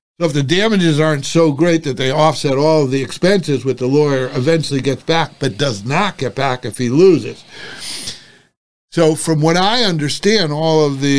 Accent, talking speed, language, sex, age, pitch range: American, 190 wpm, English, male, 60-79, 130-160 Hz